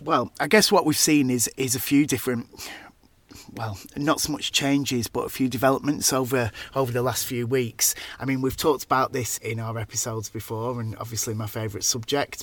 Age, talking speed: 30-49, 200 wpm